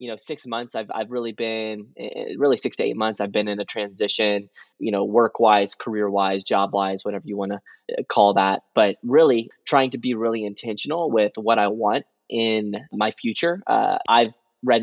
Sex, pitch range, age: male, 100-115 Hz, 20-39